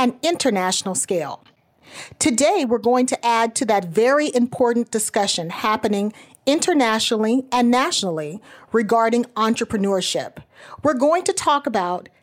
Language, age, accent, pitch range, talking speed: English, 40-59, American, 210-280 Hz, 115 wpm